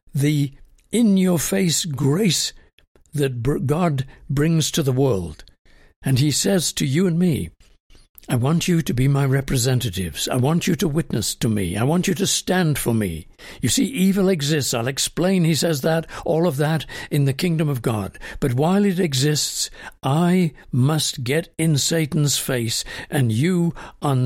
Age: 60-79